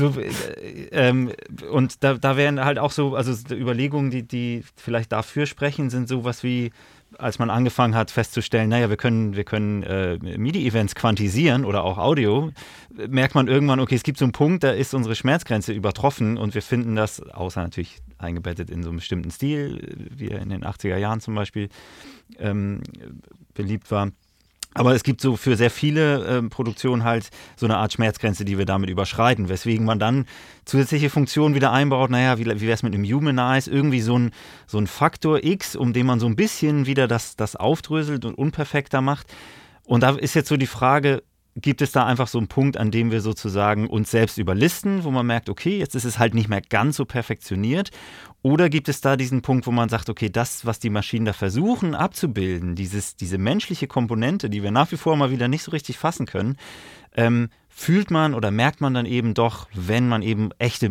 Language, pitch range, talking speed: English, 105-135 Hz, 200 wpm